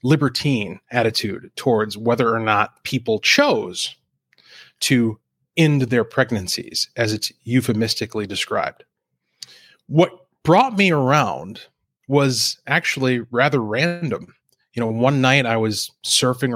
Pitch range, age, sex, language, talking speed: 115-145 Hz, 30-49, male, English, 110 wpm